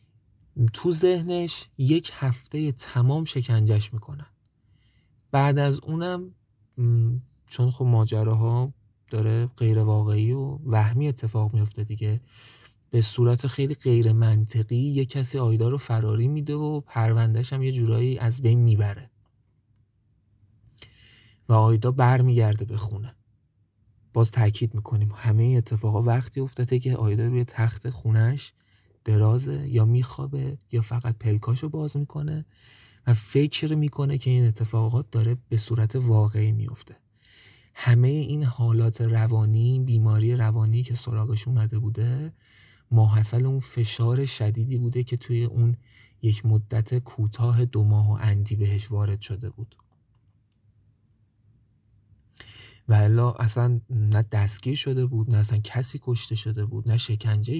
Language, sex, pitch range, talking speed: Persian, male, 110-125 Hz, 125 wpm